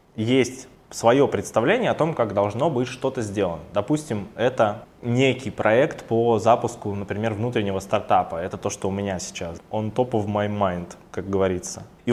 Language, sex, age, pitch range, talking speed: Russian, male, 20-39, 105-120 Hz, 165 wpm